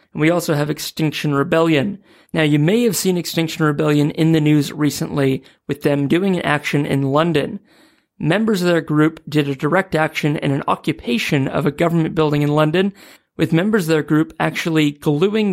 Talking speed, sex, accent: 185 wpm, male, American